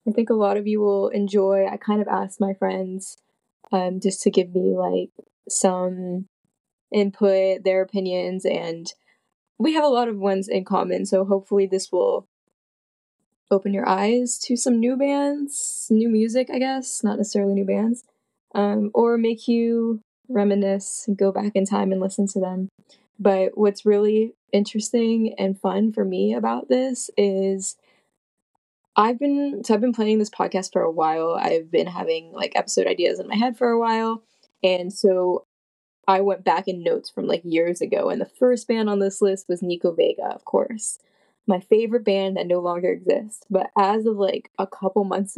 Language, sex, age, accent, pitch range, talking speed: English, female, 20-39, American, 190-235 Hz, 180 wpm